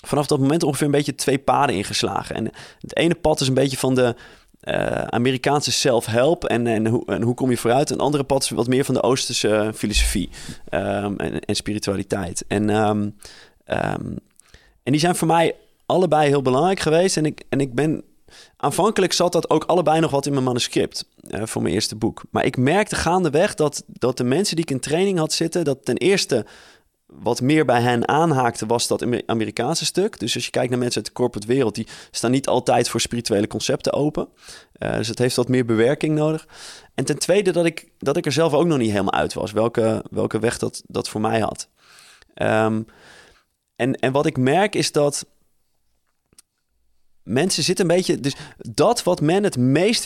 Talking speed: 205 wpm